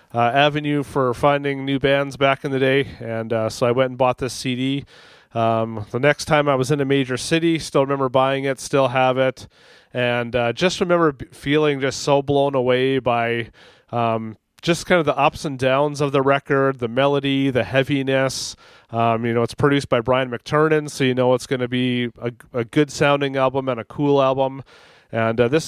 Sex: male